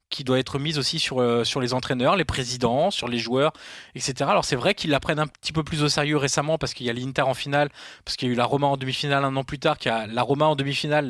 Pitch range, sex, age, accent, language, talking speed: 120-155 Hz, male, 20-39, French, French, 305 wpm